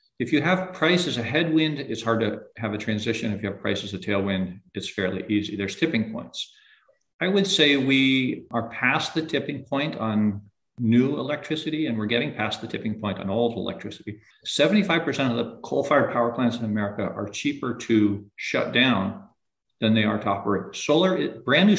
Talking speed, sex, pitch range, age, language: 185 wpm, male, 105-140 Hz, 50-69, English